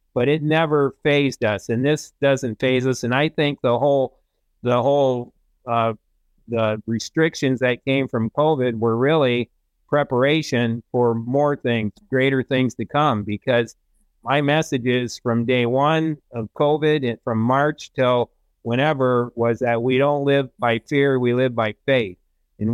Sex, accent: male, American